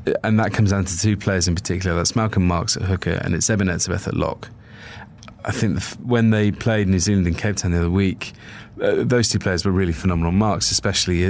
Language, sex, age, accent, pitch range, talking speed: English, male, 20-39, British, 90-110 Hz, 235 wpm